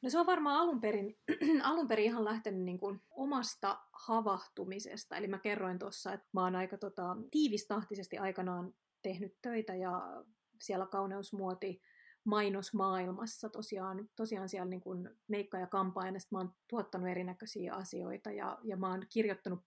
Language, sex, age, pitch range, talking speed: Finnish, female, 30-49, 190-220 Hz, 145 wpm